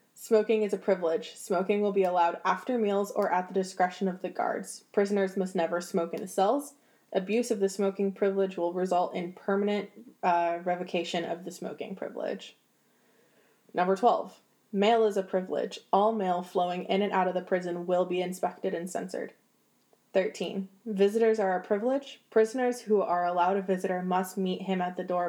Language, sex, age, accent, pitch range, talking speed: English, female, 20-39, American, 180-215 Hz, 180 wpm